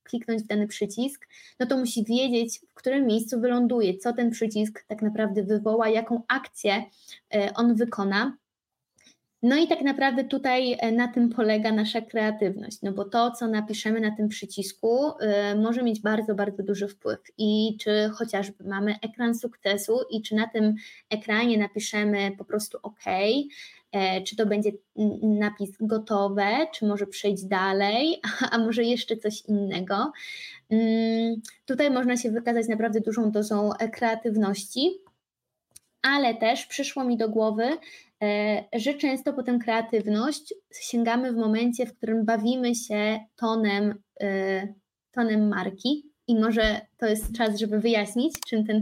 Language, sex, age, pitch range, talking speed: Polish, female, 20-39, 210-240 Hz, 140 wpm